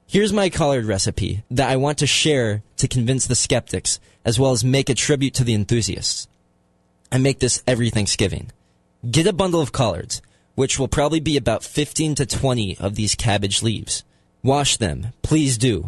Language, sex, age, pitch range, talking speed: English, male, 20-39, 100-135 Hz, 180 wpm